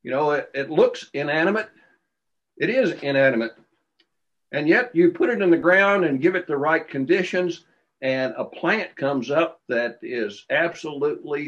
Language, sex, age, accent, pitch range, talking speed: English, male, 60-79, American, 130-210 Hz, 160 wpm